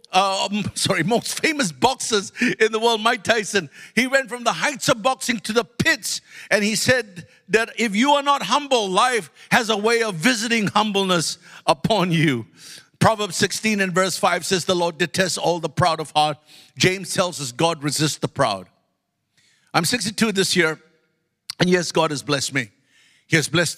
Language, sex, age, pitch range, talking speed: English, male, 50-69, 155-190 Hz, 180 wpm